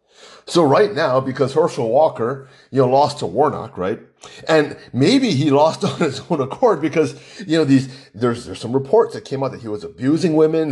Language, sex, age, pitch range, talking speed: English, male, 30-49, 135-195 Hz, 200 wpm